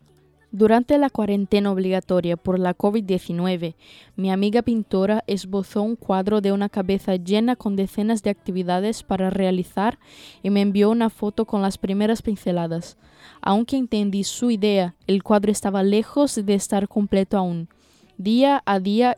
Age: 10-29